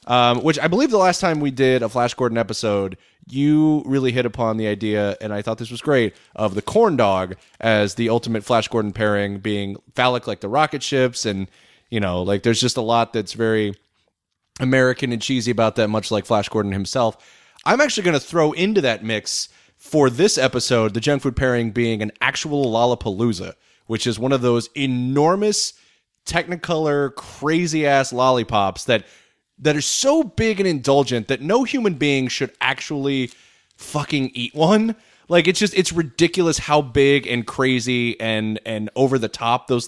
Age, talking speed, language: 30-49, 180 wpm, English